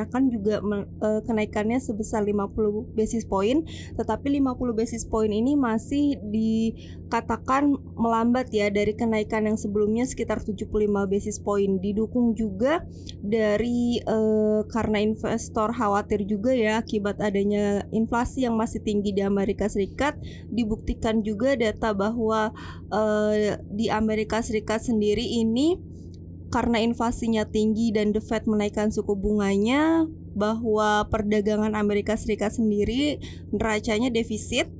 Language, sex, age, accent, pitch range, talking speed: Indonesian, female, 20-39, native, 210-230 Hz, 115 wpm